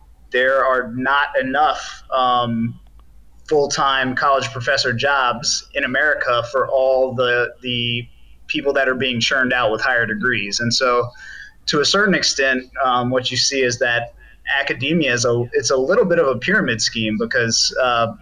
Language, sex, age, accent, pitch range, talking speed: English, male, 30-49, American, 120-145 Hz, 160 wpm